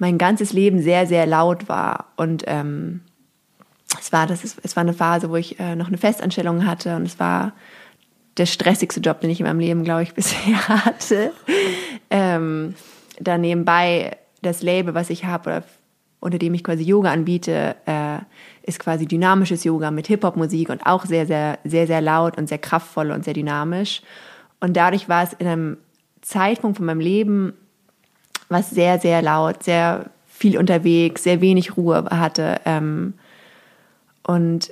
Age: 20-39